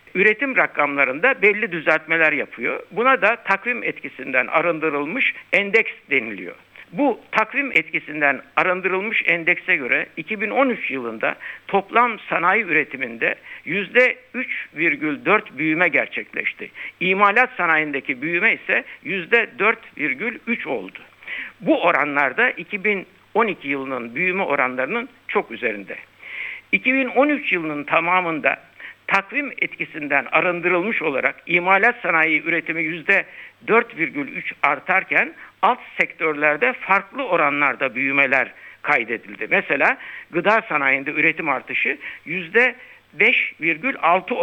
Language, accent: Turkish, native